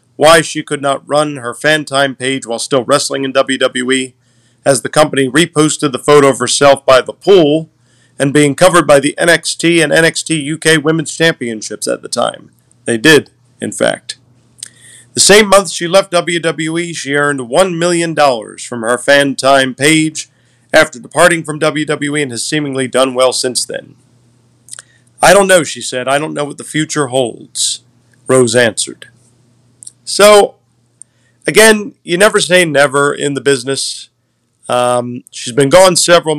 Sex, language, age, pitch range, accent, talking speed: male, English, 40-59, 125-160 Hz, American, 155 wpm